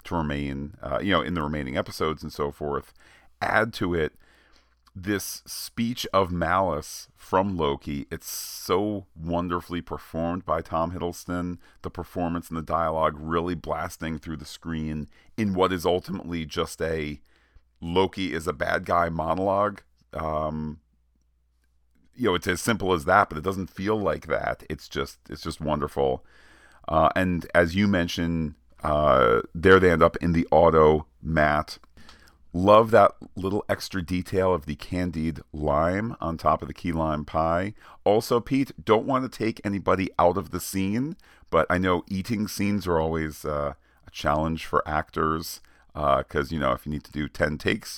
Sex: male